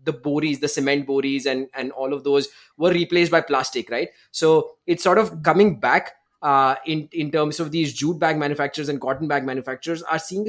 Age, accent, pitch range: 20-39, Indian, 135-160 Hz